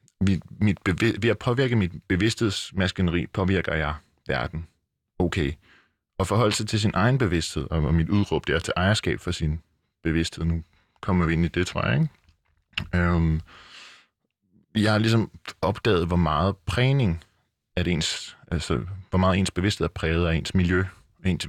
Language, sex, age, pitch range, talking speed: Danish, male, 20-39, 80-100 Hz, 155 wpm